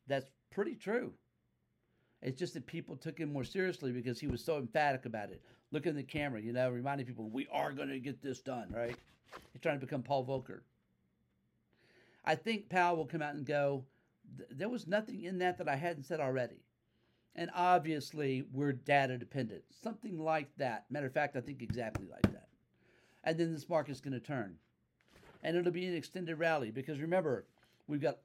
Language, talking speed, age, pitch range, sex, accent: English, 195 wpm, 50-69, 125-160 Hz, male, American